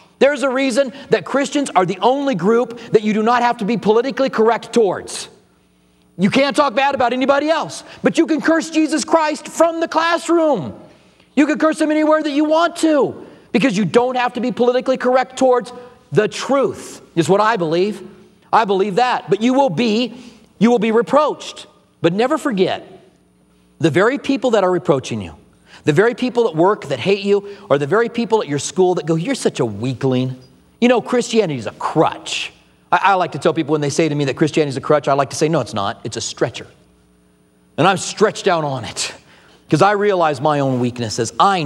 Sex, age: male, 40-59